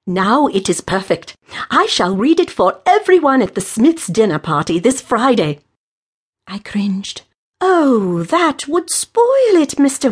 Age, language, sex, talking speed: 50-69, English, female, 150 wpm